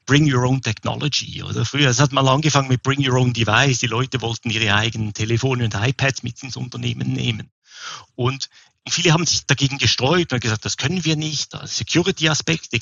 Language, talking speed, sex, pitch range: German, 185 wpm, male, 120-150 Hz